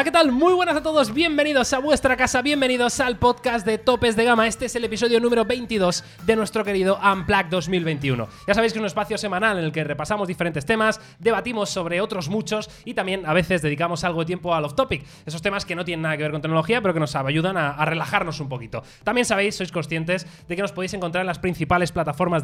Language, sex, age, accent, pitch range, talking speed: Spanish, male, 20-39, Spanish, 160-215 Hz, 235 wpm